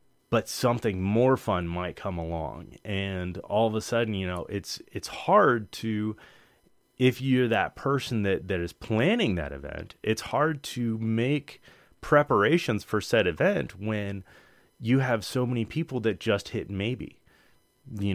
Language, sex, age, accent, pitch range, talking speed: English, male, 30-49, American, 100-135 Hz, 155 wpm